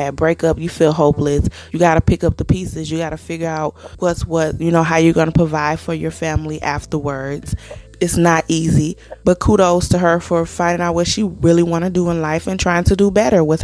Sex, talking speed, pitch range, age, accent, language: female, 240 wpm, 155-185 Hz, 20-39, American, English